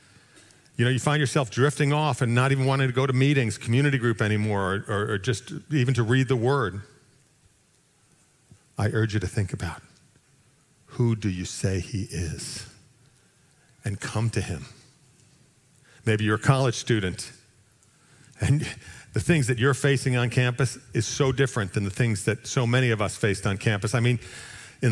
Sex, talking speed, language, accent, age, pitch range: male, 175 wpm, English, American, 50-69, 110-135 Hz